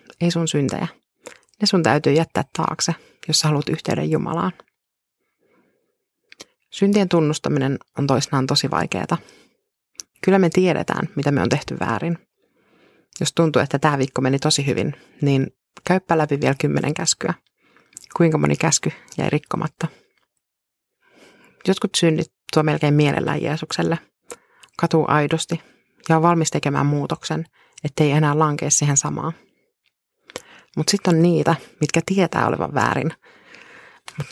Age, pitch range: 30-49, 145-170 Hz